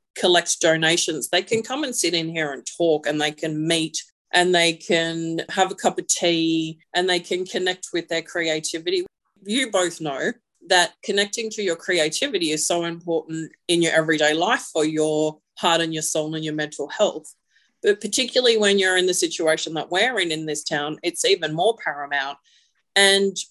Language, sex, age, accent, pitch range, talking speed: English, female, 30-49, Australian, 160-195 Hz, 185 wpm